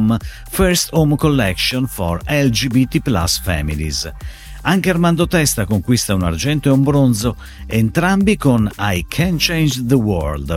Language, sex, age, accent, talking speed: Italian, male, 50-69, native, 130 wpm